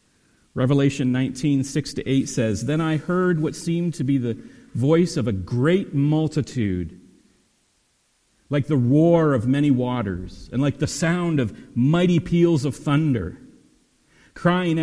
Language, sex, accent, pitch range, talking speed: English, male, American, 115-150 Hz, 140 wpm